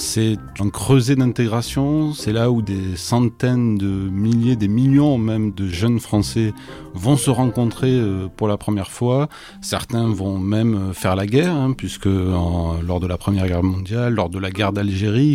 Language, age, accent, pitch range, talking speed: French, 30-49, French, 95-125 Hz, 170 wpm